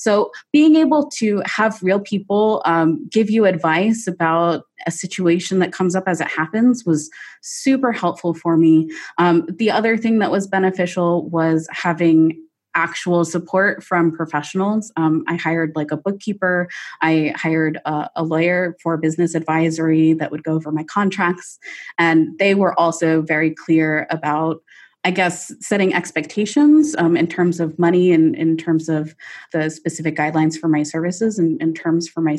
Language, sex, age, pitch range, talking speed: English, female, 20-39, 160-190 Hz, 165 wpm